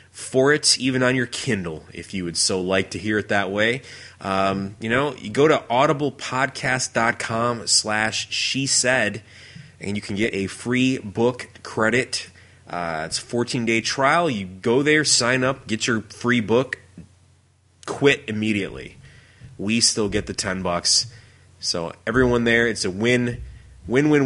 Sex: male